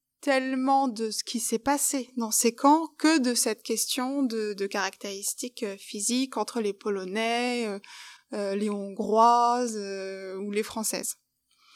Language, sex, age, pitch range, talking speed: French, female, 20-39, 215-260 Hz, 145 wpm